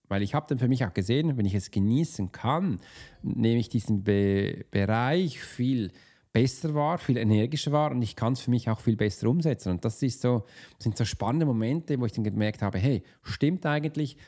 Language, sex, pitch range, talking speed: German, male, 105-145 Hz, 210 wpm